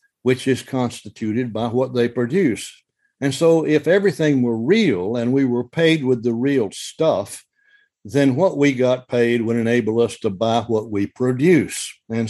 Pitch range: 120-145 Hz